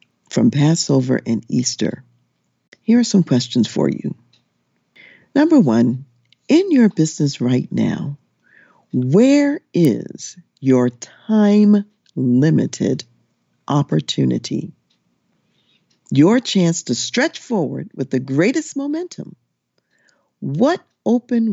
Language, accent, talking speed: English, American, 90 wpm